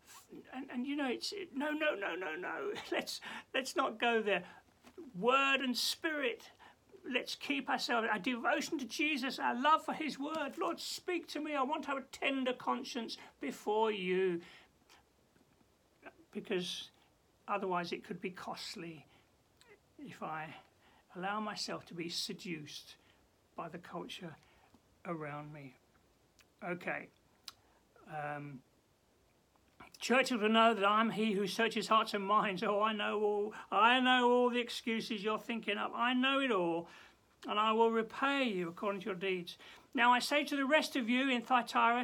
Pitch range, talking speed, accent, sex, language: 190-275 Hz, 155 wpm, British, male, English